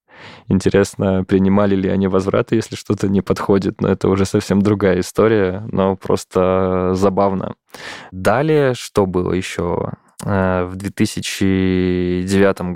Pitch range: 85-95 Hz